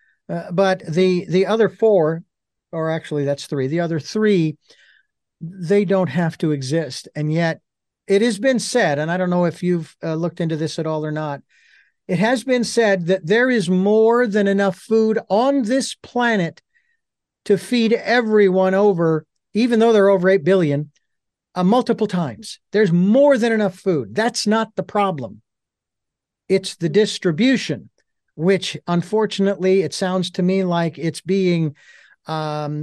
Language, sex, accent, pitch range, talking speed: English, male, American, 155-210 Hz, 160 wpm